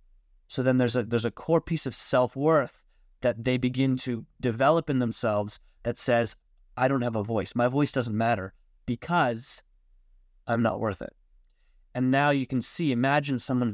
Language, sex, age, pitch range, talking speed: English, male, 20-39, 110-135 Hz, 175 wpm